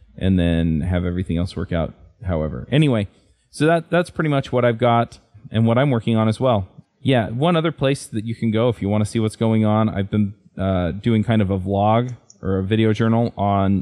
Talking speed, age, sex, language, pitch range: 230 wpm, 20-39, male, English, 95-115 Hz